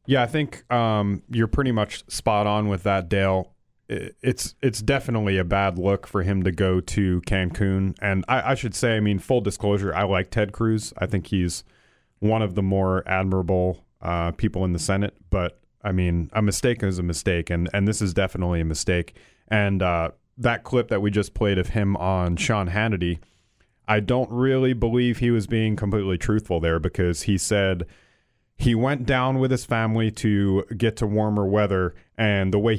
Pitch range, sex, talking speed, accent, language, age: 95-110 Hz, male, 195 wpm, American, English, 30-49